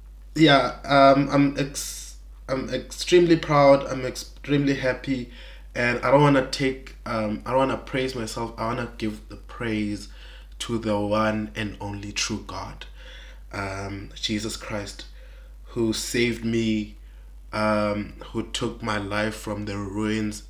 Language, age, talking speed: English, 20-39, 140 wpm